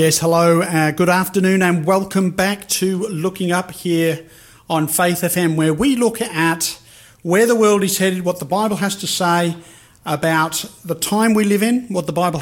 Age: 40-59